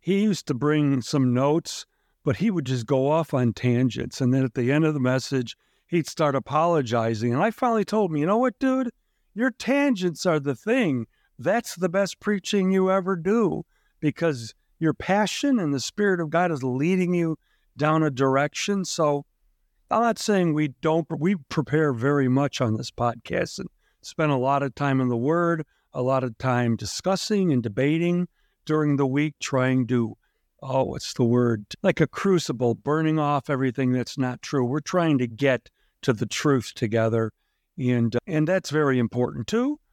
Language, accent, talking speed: English, American, 180 wpm